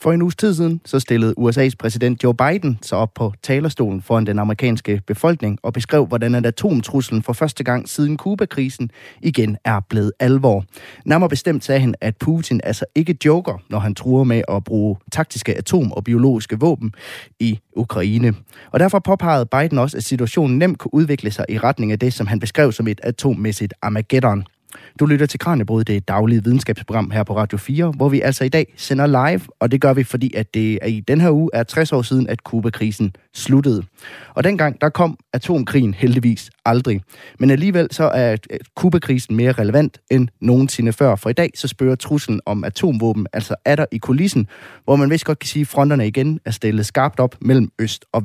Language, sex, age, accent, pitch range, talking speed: Danish, male, 20-39, native, 110-145 Hz, 200 wpm